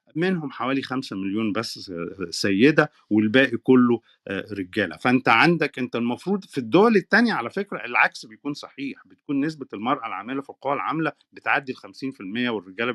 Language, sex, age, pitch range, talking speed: Arabic, male, 40-59, 115-185 Hz, 150 wpm